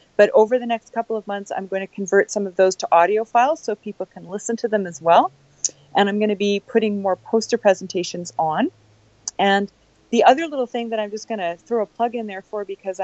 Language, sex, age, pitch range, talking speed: English, female, 30-49, 195-250 Hz, 240 wpm